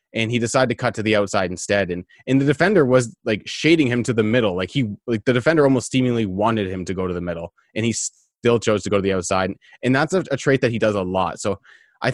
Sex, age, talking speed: male, 20-39, 270 wpm